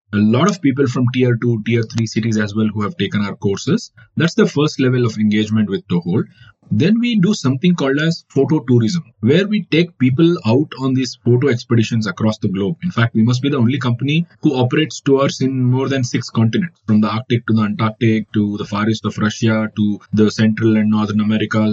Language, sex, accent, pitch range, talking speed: English, male, Indian, 110-145 Hz, 220 wpm